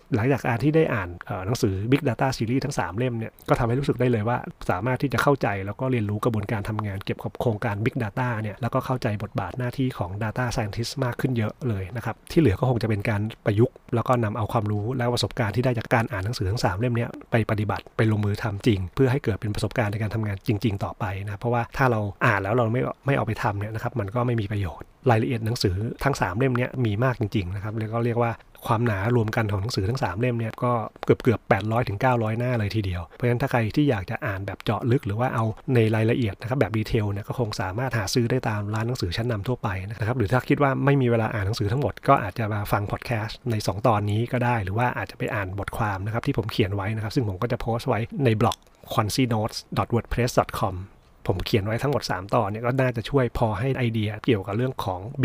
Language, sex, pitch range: Thai, male, 105-125 Hz